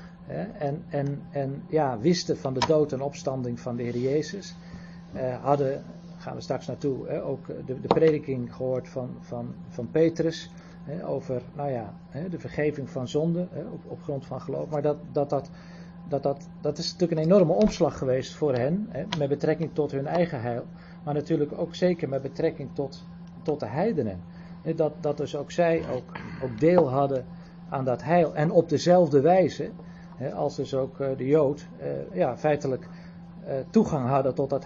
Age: 40-59